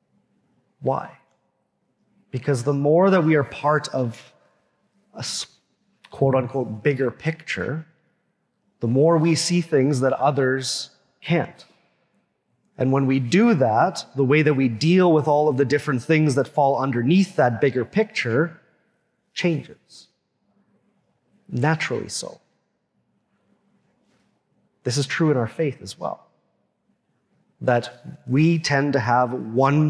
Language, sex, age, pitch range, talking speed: English, male, 30-49, 125-155 Hz, 120 wpm